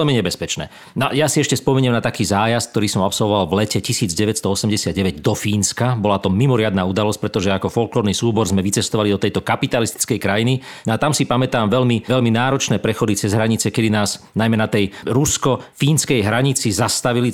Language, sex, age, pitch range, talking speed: Slovak, male, 40-59, 105-130 Hz, 175 wpm